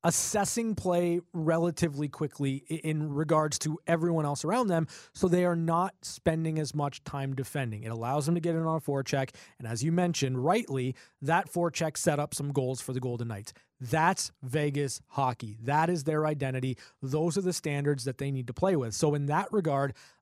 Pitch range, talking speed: 140-175 Hz, 200 wpm